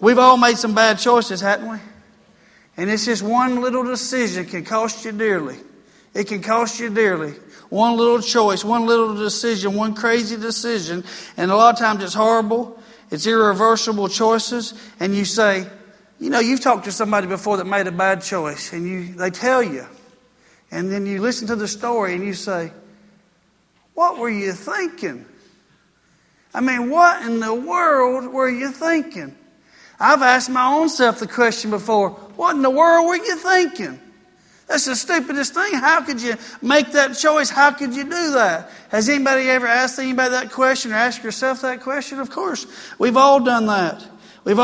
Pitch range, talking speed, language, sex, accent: 210-255 Hz, 180 wpm, English, male, American